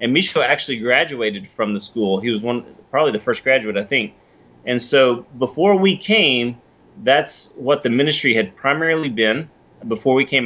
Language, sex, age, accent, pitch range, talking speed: English, male, 30-49, American, 105-135 Hz, 180 wpm